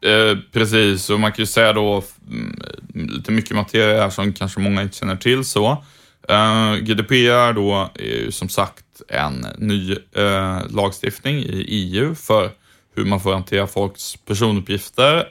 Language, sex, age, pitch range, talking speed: Swedish, male, 20-39, 100-115 Hz, 150 wpm